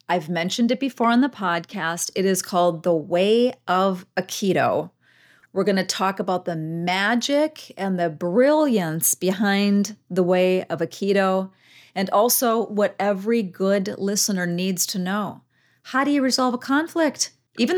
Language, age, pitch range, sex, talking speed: English, 40-59, 175-215 Hz, female, 150 wpm